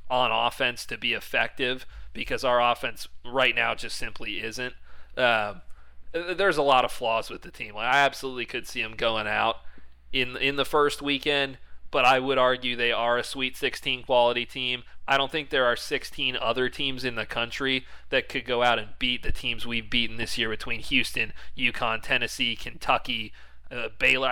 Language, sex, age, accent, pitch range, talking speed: English, male, 30-49, American, 120-140 Hz, 190 wpm